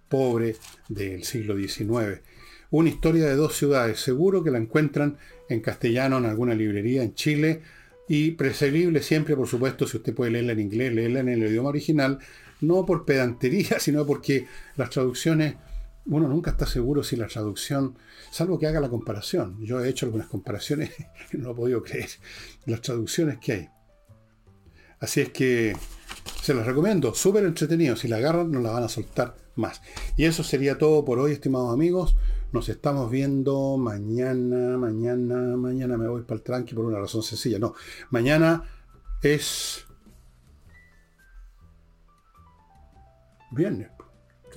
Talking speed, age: 155 wpm, 50-69